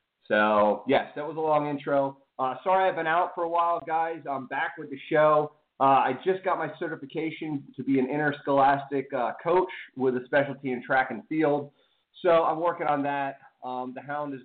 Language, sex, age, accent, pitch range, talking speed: English, male, 30-49, American, 120-150 Hz, 205 wpm